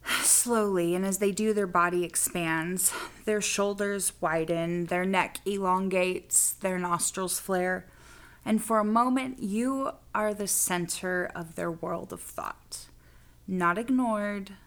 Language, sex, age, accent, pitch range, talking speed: English, female, 20-39, American, 170-205 Hz, 130 wpm